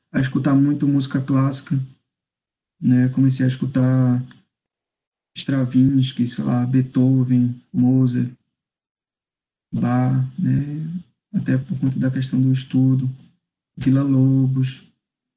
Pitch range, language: 130-145 Hz, Portuguese